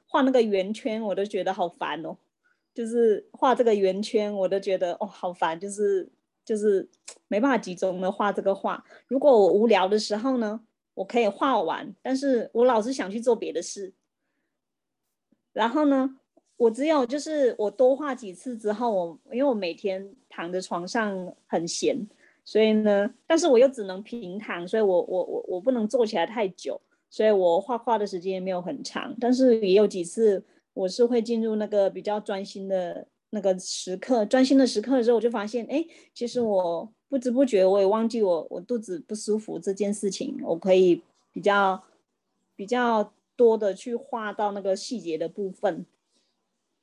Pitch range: 195-255 Hz